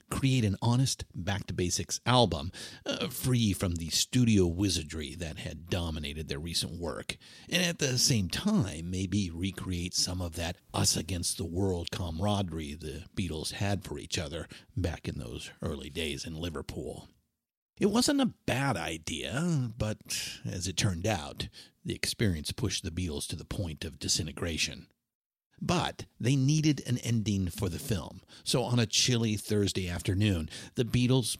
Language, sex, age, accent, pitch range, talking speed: English, male, 50-69, American, 85-115 Hz, 150 wpm